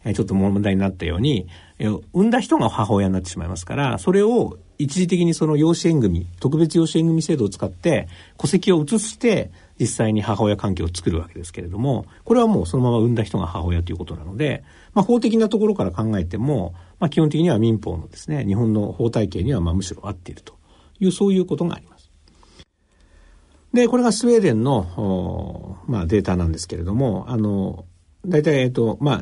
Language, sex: Japanese, male